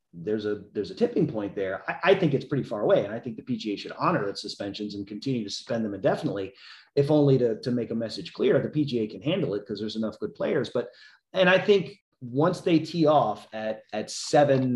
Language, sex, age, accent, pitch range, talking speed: English, male, 30-49, American, 115-145 Hz, 235 wpm